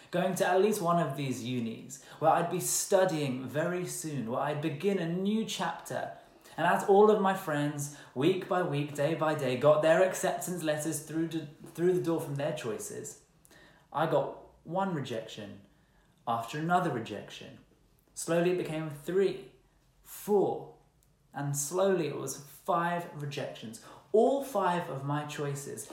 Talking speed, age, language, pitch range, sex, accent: 155 wpm, 20-39, English, 145-195 Hz, male, British